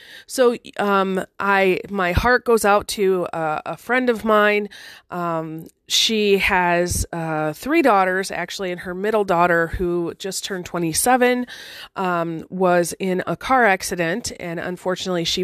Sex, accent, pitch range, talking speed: female, American, 175-225 Hz, 145 wpm